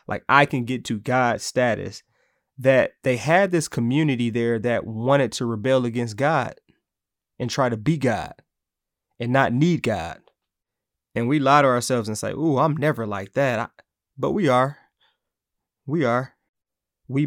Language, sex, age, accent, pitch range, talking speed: English, male, 20-39, American, 115-145 Hz, 160 wpm